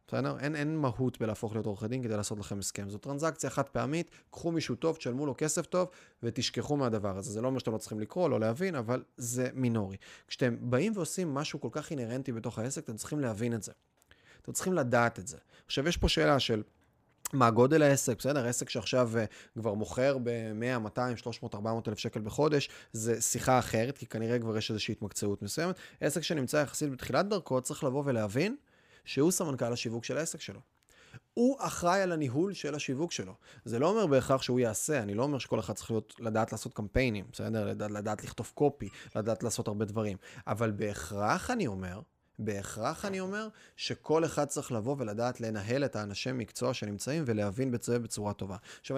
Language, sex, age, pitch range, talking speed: Hebrew, male, 30-49, 110-145 Hz, 175 wpm